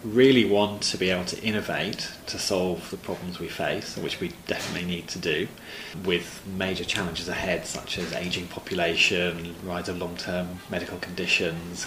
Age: 30-49